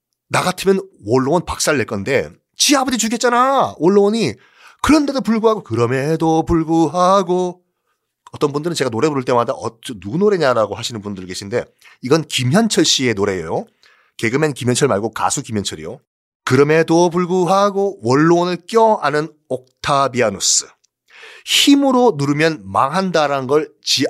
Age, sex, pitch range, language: 30-49, male, 130-200 Hz, Korean